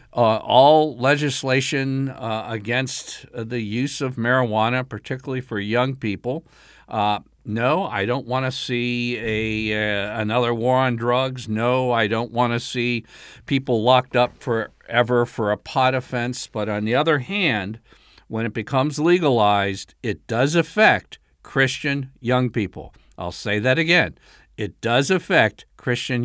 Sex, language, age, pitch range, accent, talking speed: male, English, 50-69, 110-150 Hz, American, 145 wpm